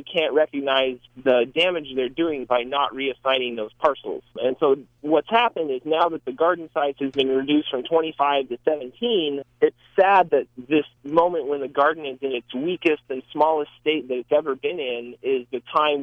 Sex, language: male, English